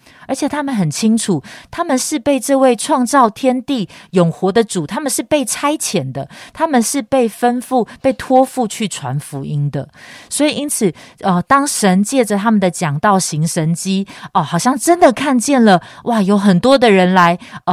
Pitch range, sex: 160-235 Hz, female